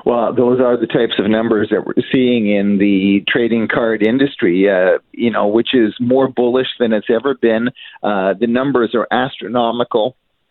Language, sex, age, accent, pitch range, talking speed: English, male, 50-69, American, 110-135 Hz, 175 wpm